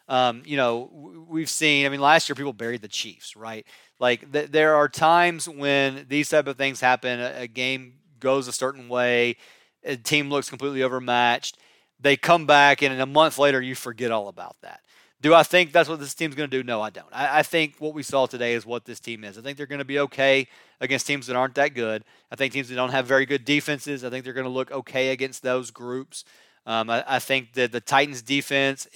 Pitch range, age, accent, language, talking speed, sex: 130-155 Hz, 30-49, American, English, 240 wpm, male